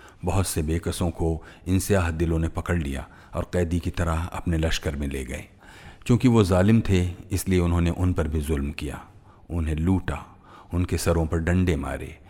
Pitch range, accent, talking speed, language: 80-90 Hz, native, 175 wpm, Hindi